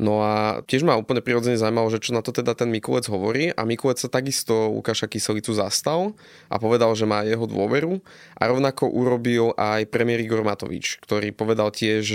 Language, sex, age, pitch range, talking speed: Slovak, male, 20-39, 110-125 Hz, 190 wpm